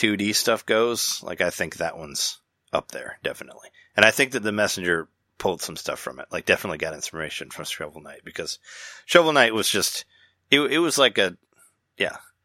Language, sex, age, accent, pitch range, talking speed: English, male, 30-49, American, 90-115 Hz, 195 wpm